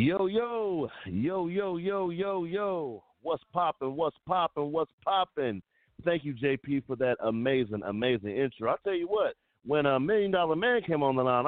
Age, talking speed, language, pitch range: 40-59, 180 wpm, English, 130-195 Hz